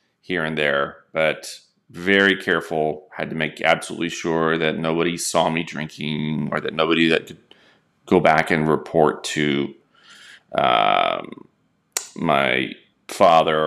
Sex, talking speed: male, 125 wpm